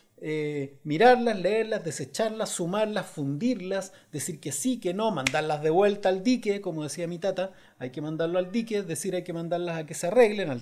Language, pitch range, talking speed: Spanish, 155-220 Hz, 200 wpm